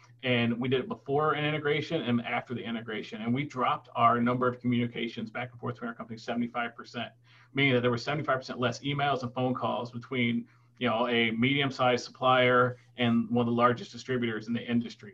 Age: 40-59